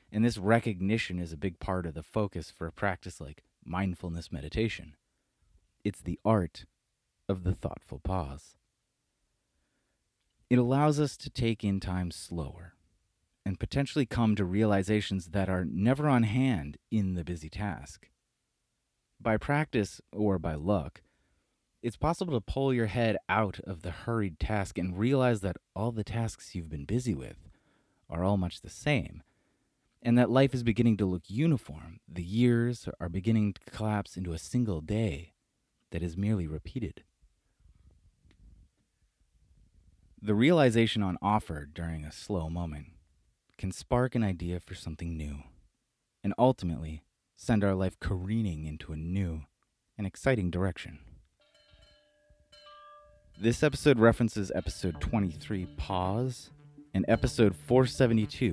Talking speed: 135 wpm